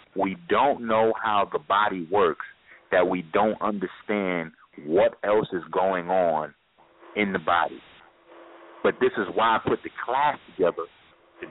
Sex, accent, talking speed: male, American, 150 wpm